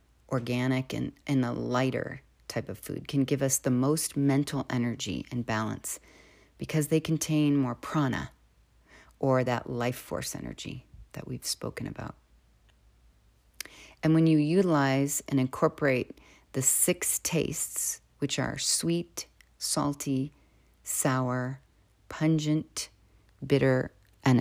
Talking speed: 120 wpm